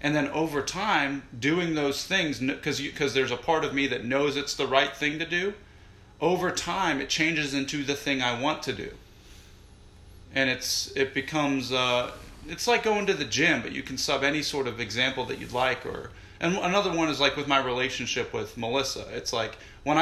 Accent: American